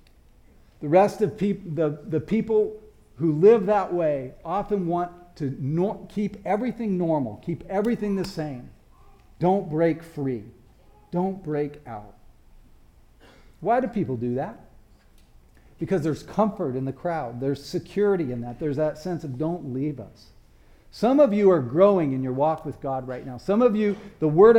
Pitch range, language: 145-200 Hz, English